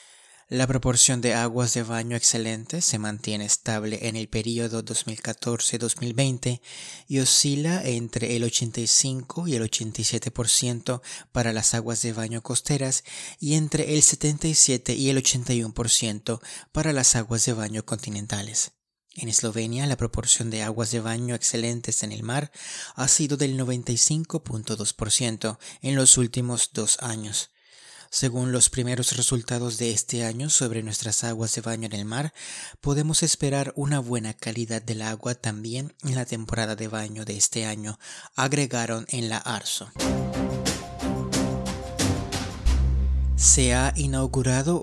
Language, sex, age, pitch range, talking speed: Spanish, male, 30-49, 110-130 Hz, 135 wpm